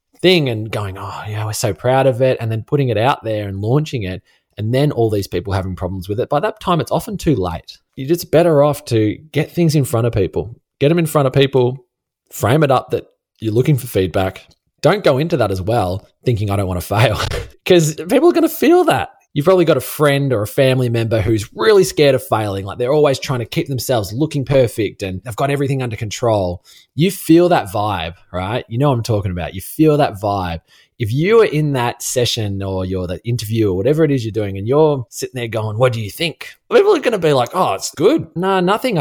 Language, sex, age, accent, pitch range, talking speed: English, male, 20-39, Australian, 100-140 Hz, 245 wpm